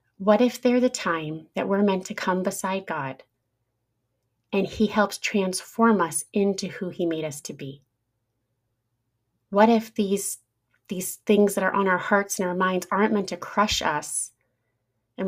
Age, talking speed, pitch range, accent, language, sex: 30-49, 170 wpm, 155-200 Hz, American, English, female